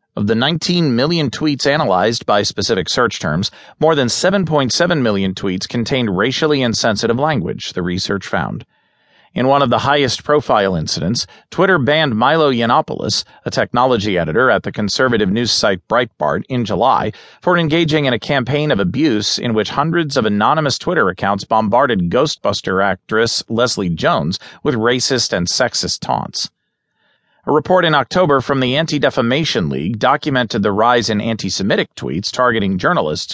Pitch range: 110-150 Hz